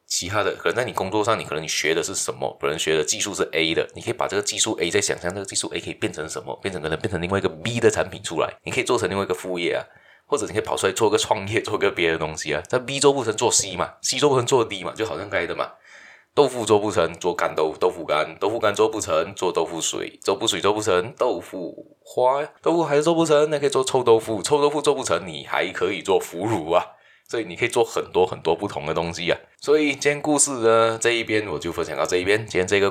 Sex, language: male, Chinese